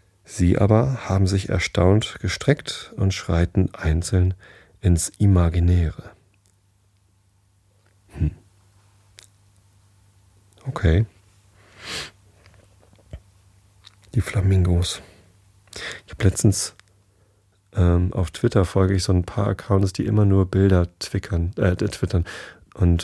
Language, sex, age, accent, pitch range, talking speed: German, male, 40-59, German, 90-100 Hz, 90 wpm